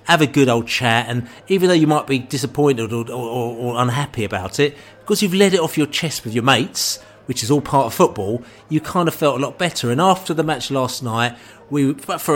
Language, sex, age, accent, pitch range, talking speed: English, male, 40-59, British, 120-150 Hz, 240 wpm